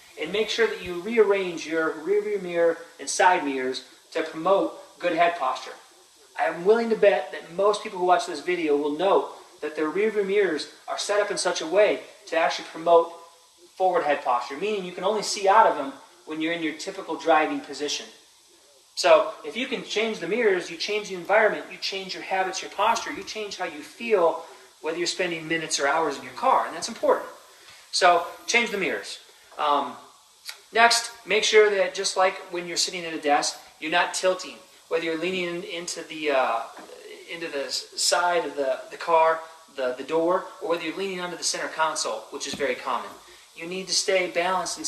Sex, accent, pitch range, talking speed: male, American, 160-205 Hz, 205 wpm